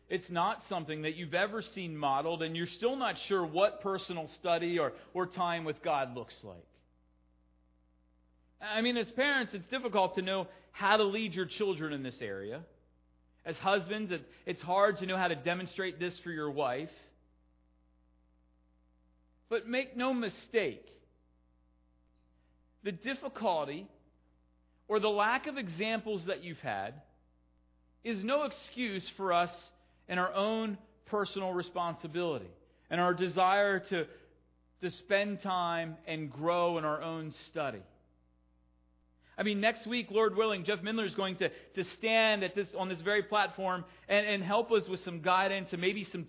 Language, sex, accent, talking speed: English, male, American, 155 wpm